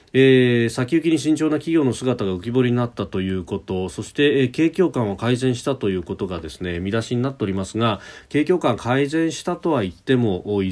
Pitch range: 95-135 Hz